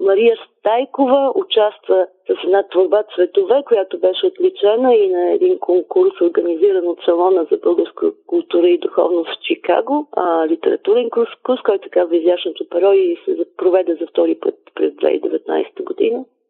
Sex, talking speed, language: female, 145 wpm, Bulgarian